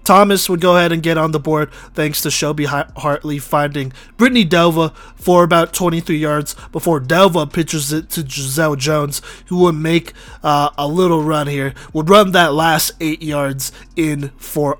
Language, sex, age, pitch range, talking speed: English, male, 20-39, 140-170 Hz, 175 wpm